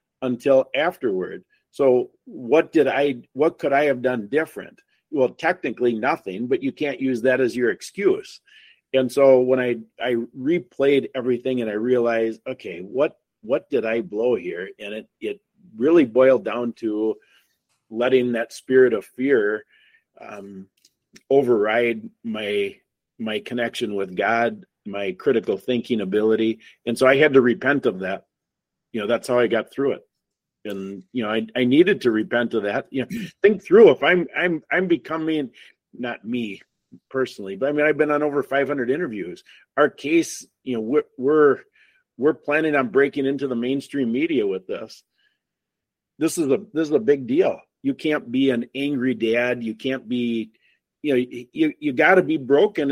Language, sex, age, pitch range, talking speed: English, male, 50-69, 120-180 Hz, 175 wpm